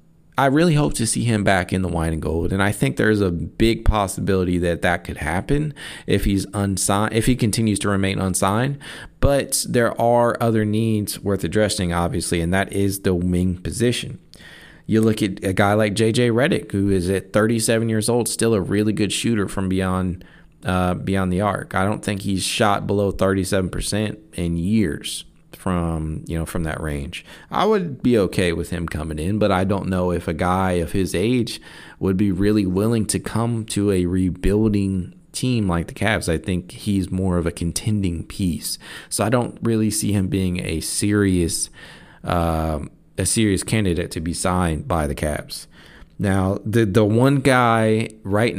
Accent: American